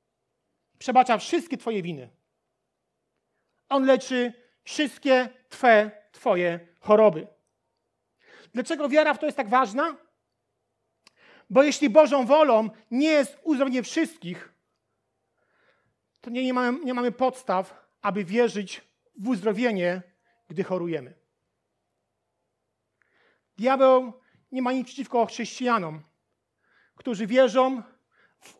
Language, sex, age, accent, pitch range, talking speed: Polish, male, 40-59, native, 195-260 Hz, 95 wpm